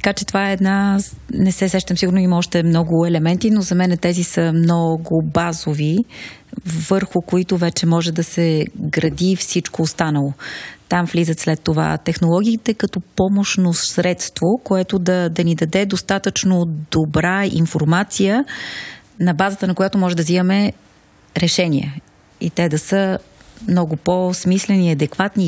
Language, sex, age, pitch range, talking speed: Bulgarian, female, 30-49, 170-195 Hz, 140 wpm